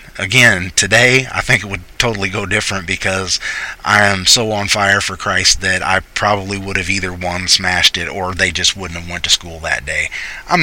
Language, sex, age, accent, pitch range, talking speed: English, male, 30-49, American, 85-95 Hz, 210 wpm